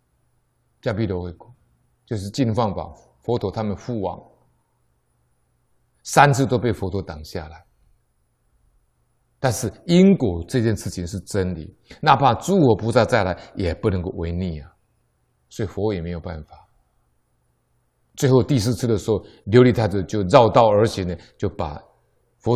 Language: Chinese